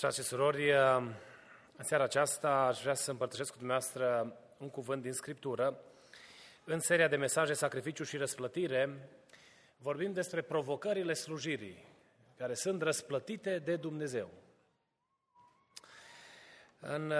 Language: Romanian